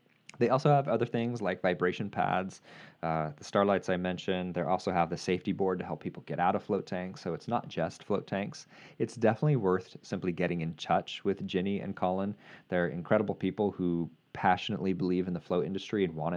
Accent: American